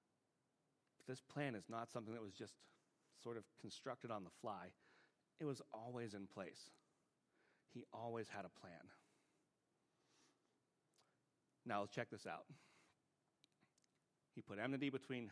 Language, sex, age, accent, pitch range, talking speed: English, male, 40-59, American, 115-140 Hz, 130 wpm